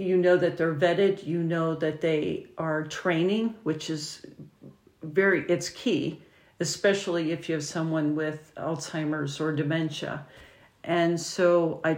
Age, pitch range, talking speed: 50-69, 165-195 Hz, 140 wpm